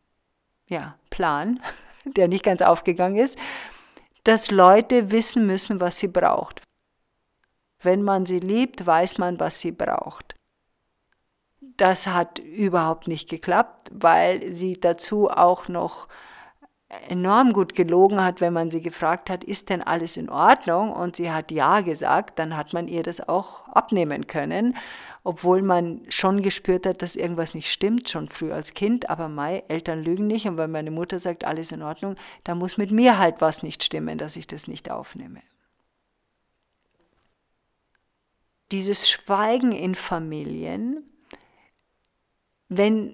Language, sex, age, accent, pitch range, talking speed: German, female, 50-69, German, 170-205 Hz, 145 wpm